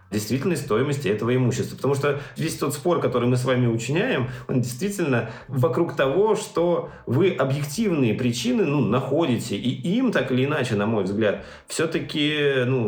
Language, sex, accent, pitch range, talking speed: Russian, male, native, 100-130 Hz, 160 wpm